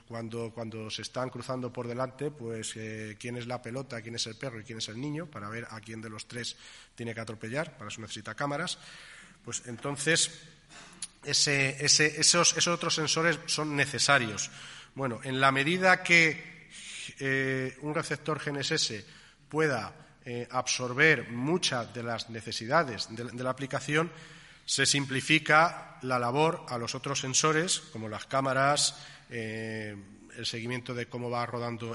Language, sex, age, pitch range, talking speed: Spanish, male, 30-49, 115-150 Hz, 155 wpm